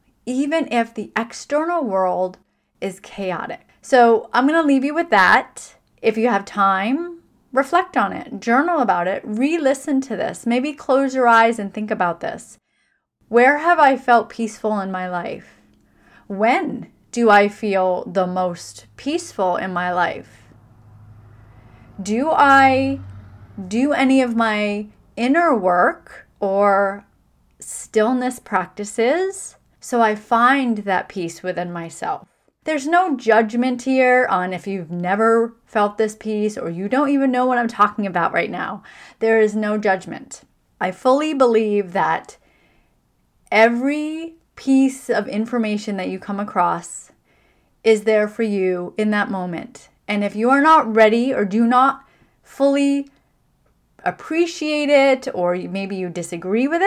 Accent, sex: American, female